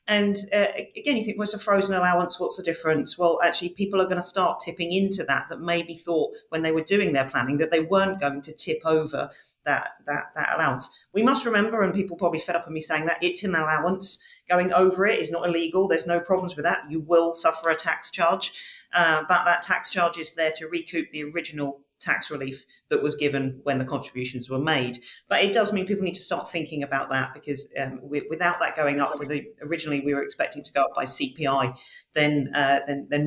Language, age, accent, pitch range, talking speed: English, 40-59, British, 140-180 Hz, 225 wpm